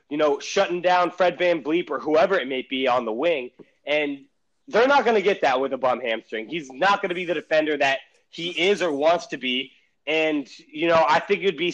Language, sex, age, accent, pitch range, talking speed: English, male, 30-49, American, 145-185 Hz, 245 wpm